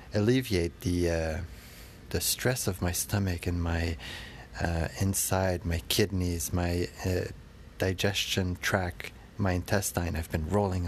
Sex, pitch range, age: male, 85-105 Hz, 30-49